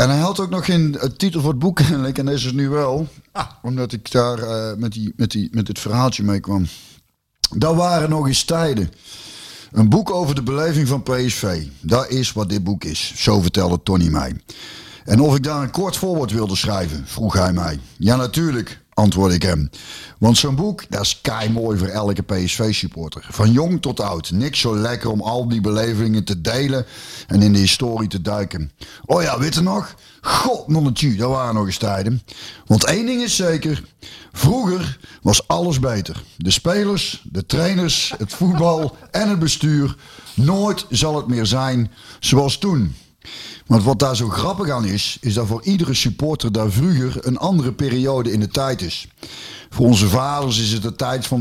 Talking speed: 185 wpm